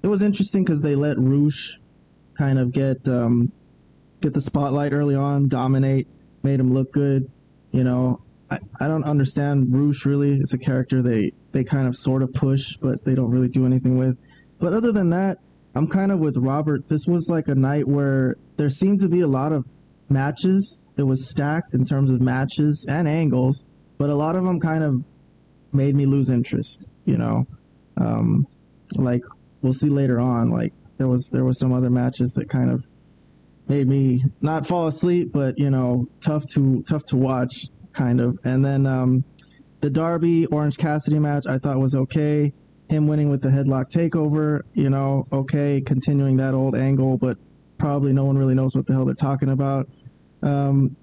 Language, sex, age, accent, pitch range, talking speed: English, male, 20-39, American, 130-150 Hz, 190 wpm